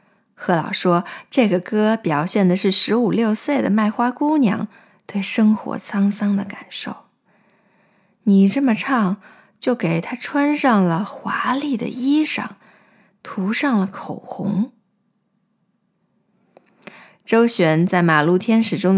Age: 20-39